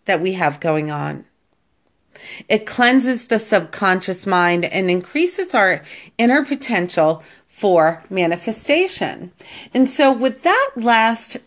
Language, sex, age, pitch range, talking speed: English, female, 40-59, 170-225 Hz, 115 wpm